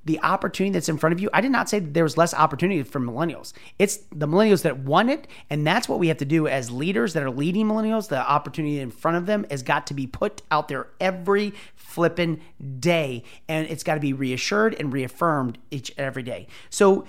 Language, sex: English, male